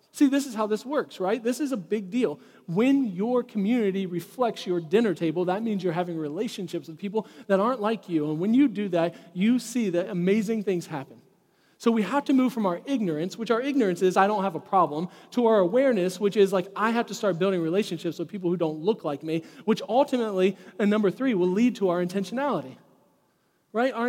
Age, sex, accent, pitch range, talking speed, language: 40-59, male, American, 170-220 Hz, 220 wpm, English